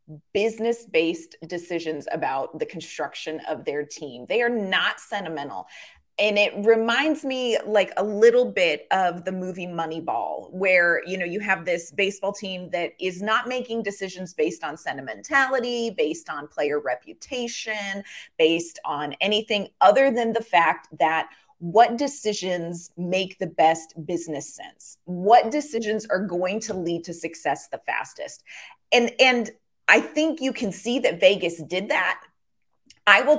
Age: 30-49